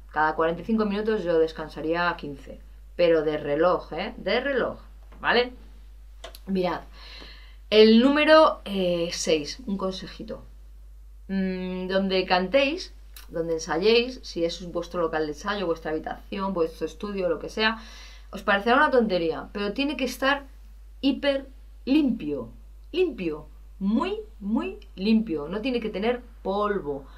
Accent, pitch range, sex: Spanish, 170-240 Hz, female